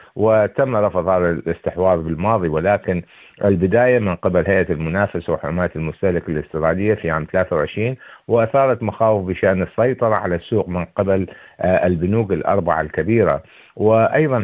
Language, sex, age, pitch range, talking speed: Arabic, male, 50-69, 85-105 Hz, 120 wpm